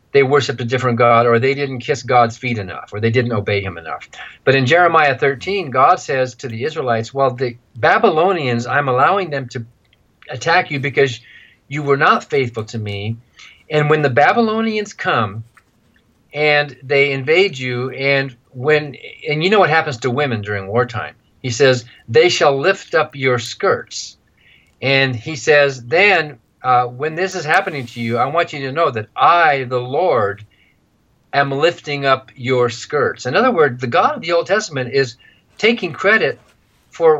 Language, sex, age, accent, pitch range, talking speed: English, male, 50-69, American, 120-145 Hz, 175 wpm